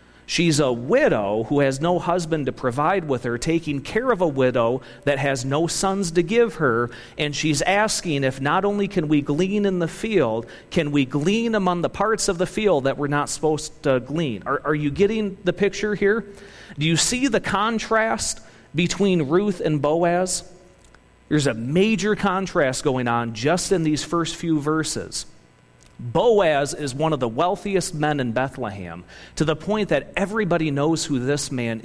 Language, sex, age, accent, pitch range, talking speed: English, male, 40-59, American, 135-185 Hz, 180 wpm